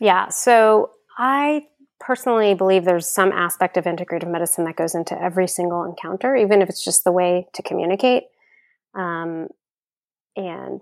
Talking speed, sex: 150 wpm, female